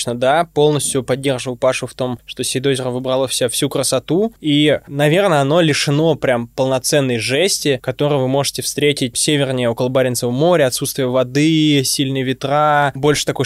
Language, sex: Russian, male